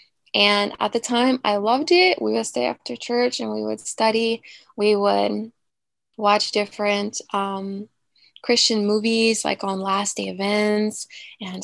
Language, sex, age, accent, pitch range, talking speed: English, female, 20-39, American, 205-240 Hz, 150 wpm